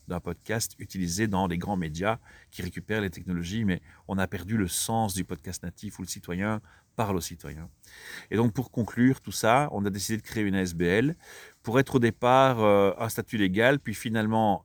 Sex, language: male, French